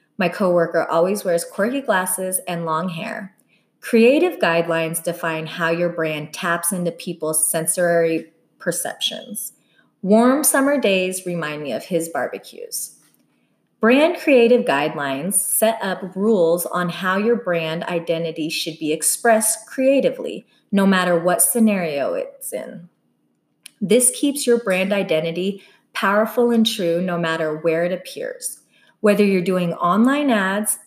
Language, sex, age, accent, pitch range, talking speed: English, female, 30-49, American, 170-235 Hz, 130 wpm